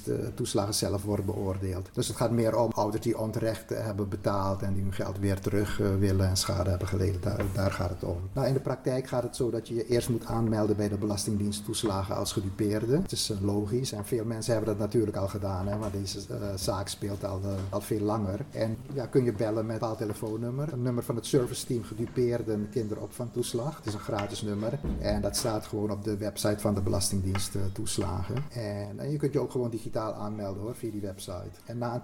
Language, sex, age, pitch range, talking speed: Dutch, male, 50-69, 100-120 Hz, 225 wpm